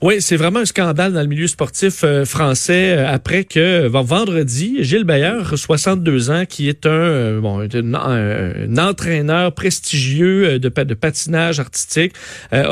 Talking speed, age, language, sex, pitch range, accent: 145 wpm, 40-59, French, male, 135-180 Hz, Canadian